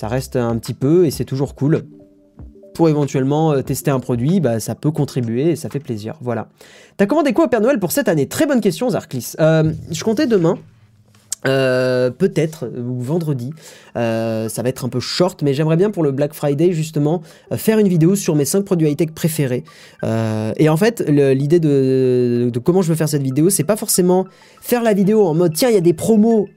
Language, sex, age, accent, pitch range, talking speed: French, male, 20-39, French, 130-185 Hz, 215 wpm